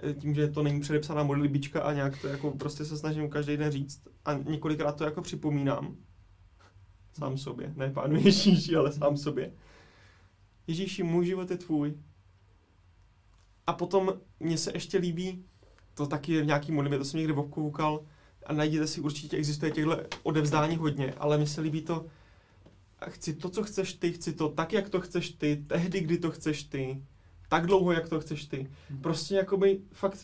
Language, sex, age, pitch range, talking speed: Czech, male, 20-39, 140-175 Hz, 175 wpm